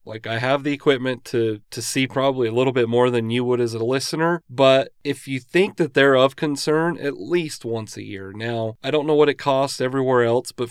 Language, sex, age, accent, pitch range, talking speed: English, male, 30-49, American, 115-140 Hz, 235 wpm